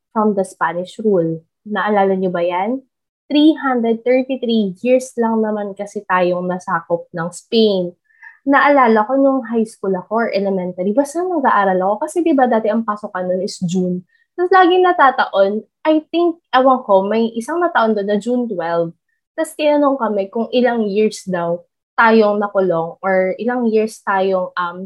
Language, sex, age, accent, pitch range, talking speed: English, female, 20-39, Filipino, 190-255 Hz, 160 wpm